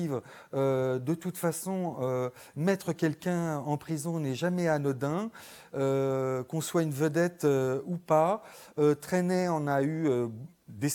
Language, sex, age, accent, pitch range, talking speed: French, male, 40-59, French, 130-175 Hz, 150 wpm